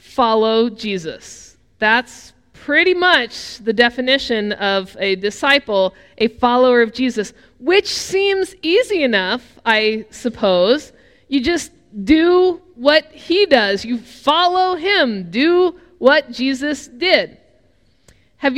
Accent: American